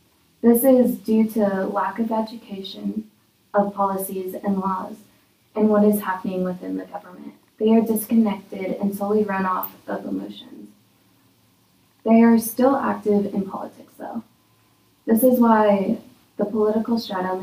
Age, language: 20-39, English